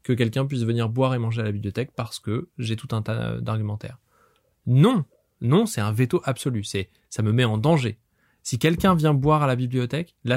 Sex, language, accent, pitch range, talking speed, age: male, French, French, 110-140 Hz, 215 wpm, 20-39